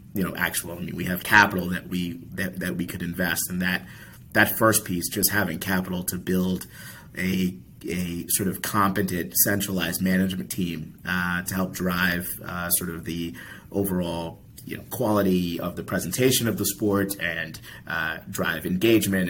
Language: English